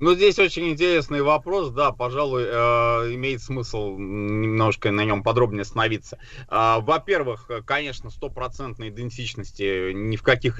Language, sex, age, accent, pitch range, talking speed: Russian, male, 30-49, native, 115-145 Hz, 120 wpm